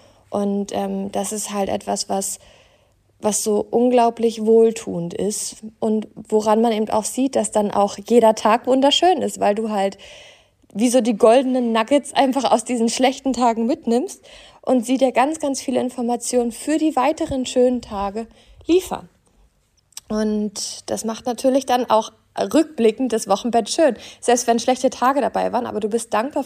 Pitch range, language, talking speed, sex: 205-255 Hz, German, 165 wpm, female